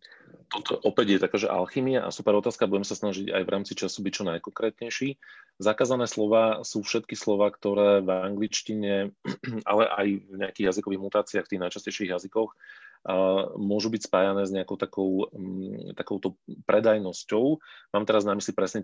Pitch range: 95-105 Hz